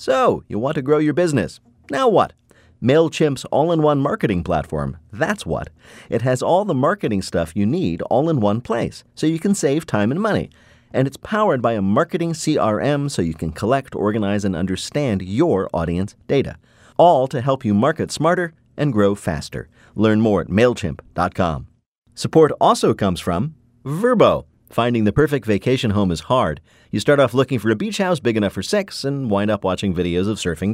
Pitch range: 100-150 Hz